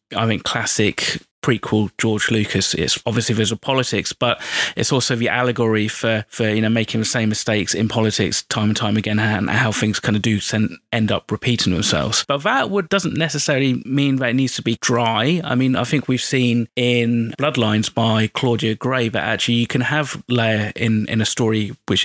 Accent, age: British, 30-49